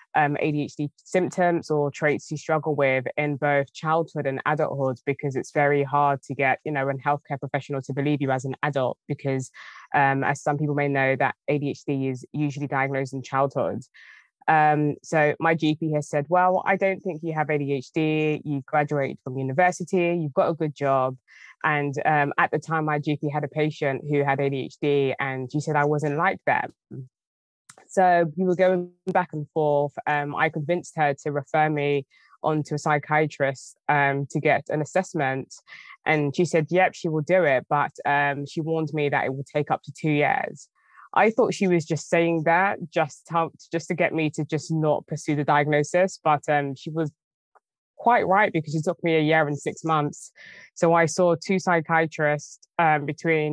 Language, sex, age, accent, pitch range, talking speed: English, female, 20-39, British, 145-160 Hz, 190 wpm